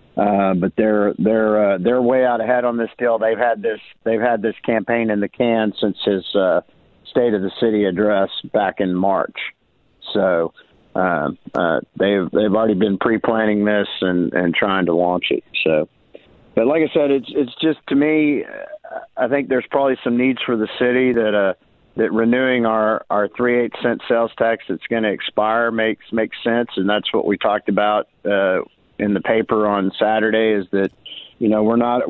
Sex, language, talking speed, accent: male, English, 195 wpm, American